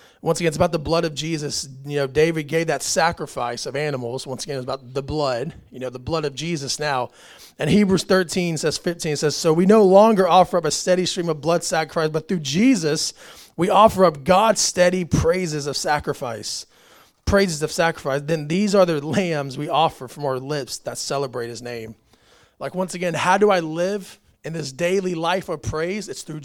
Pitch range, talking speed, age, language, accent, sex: 140-185 Hz, 205 wpm, 30-49, English, American, male